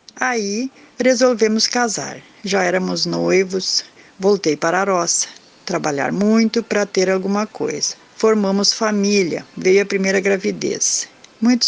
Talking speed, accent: 120 wpm, Brazilian